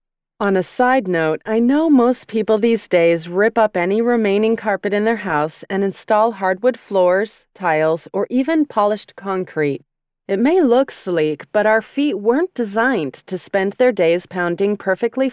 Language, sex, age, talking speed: English, female, 30-49, 165 wpm